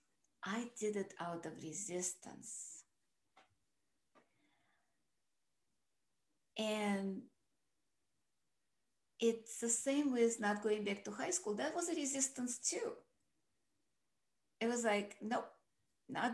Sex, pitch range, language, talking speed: female, 185-235 Hz, English, 100 wpm